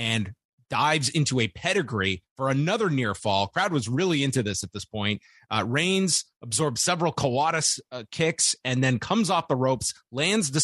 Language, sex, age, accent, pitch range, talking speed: English, male, 30-49, American, 115-160 Hz, 180 wpm